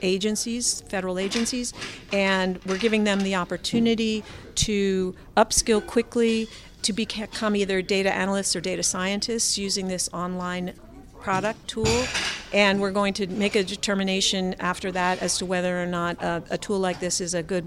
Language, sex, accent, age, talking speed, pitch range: English, female, American, 50-69, 160 wpm, 185-215 Hz